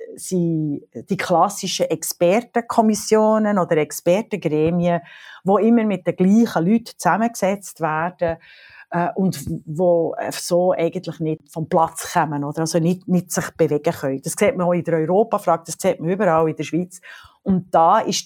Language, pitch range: German, 165-200 Hz